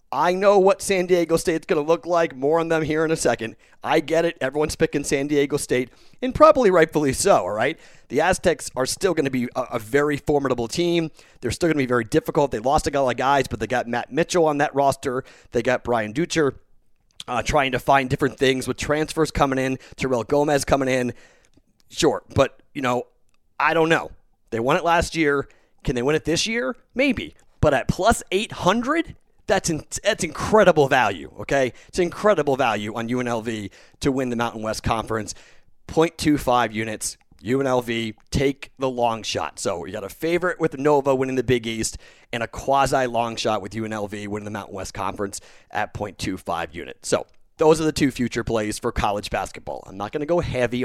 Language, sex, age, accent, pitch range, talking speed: English, male, 40-59, American, 115-160 Hz, 200 wpm